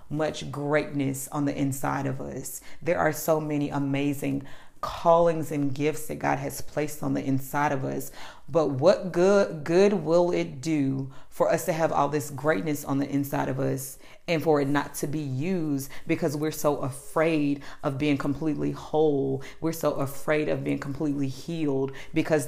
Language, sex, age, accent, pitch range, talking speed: English, female, 40-59, American, 140-175 Hz, 175 wpm